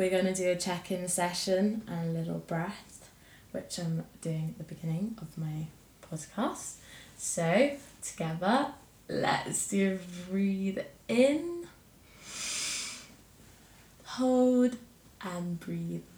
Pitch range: 165-190 Hz